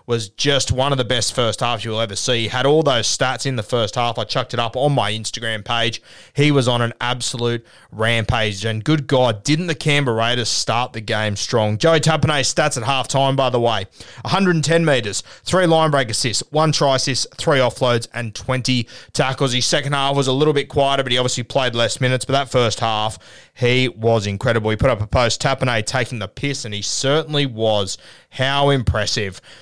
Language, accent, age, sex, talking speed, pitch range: English, Australian, 20-39, male, 210 wpm, 120-150 Hz